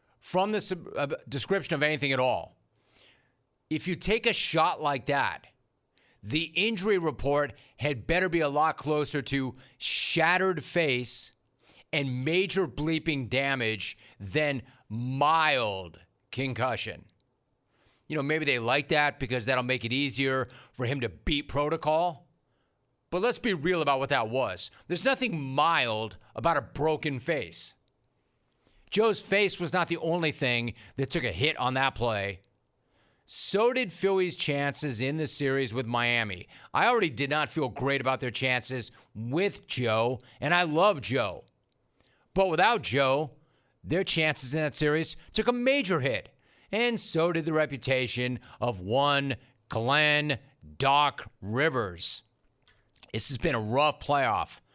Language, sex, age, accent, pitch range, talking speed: English, male, 40-59, American, 125-160 Hz, 140 wpm